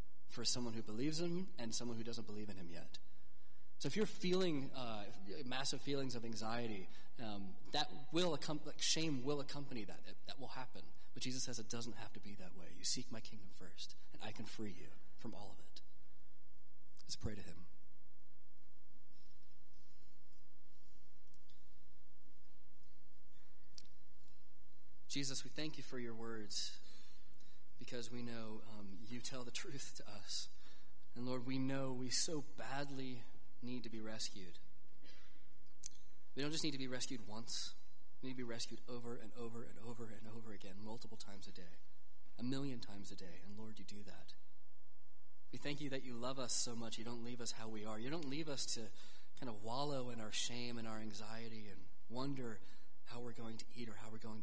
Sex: male